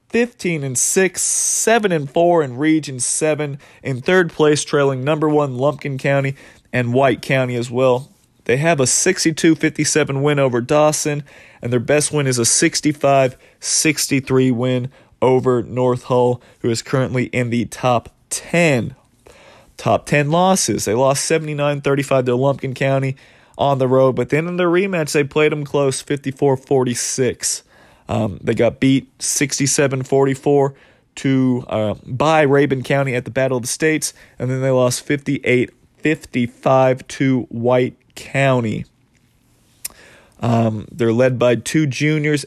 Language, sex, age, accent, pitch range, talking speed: English, male, 30-49, American, 125-145 Hz, 140 wpm